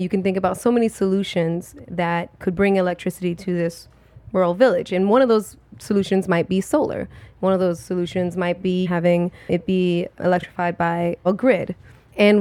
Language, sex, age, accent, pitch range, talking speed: English, female, 20-39, American, 175-195 Hz, 180 wpm